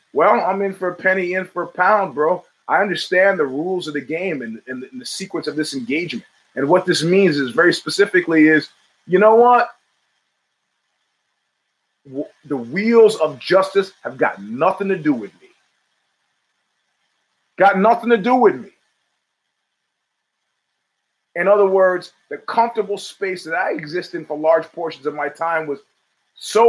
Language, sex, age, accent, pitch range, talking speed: English, male, 30-49, American, 150-200 Hz, 160 wpm